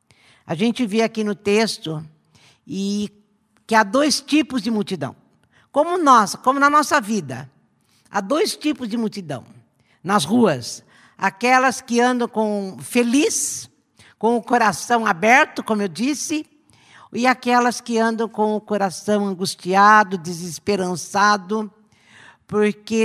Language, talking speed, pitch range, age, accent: Portuguese, 120 wpm, 195-260 Hz, 50-69, Brazilian